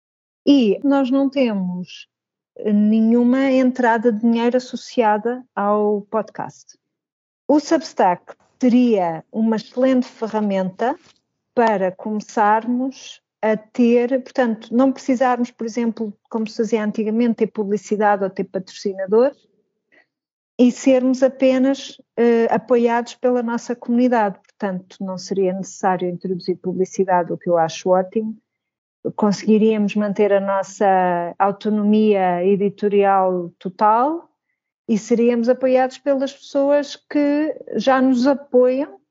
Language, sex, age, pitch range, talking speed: Portuguese, female, 50-69, 200-255 Hz, 105 wpm